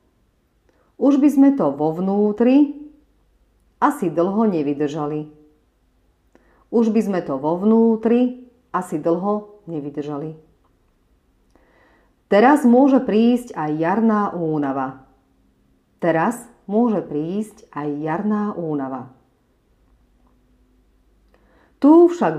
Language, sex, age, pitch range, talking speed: Slovak, female, 40-59, 145-225 Hz, 85 wpm